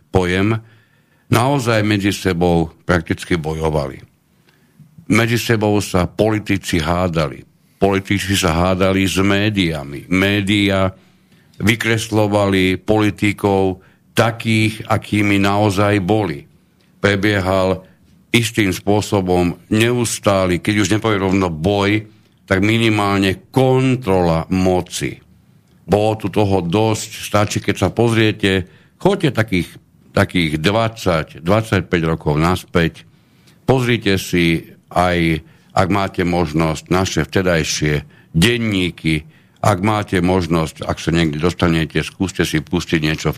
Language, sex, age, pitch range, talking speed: Slovak, male, 60-79, 85-105 Hz, 95 wpm